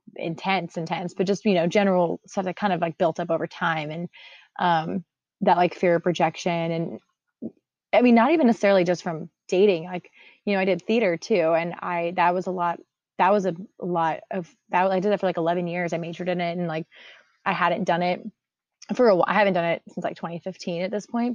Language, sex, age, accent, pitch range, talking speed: English, female, 20-39, American, 170-200 Hz, 230 wpm